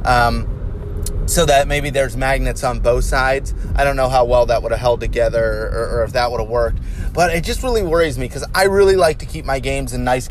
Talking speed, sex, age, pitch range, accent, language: 245 wpm, male, 30-49, 120-160 Hz, American, English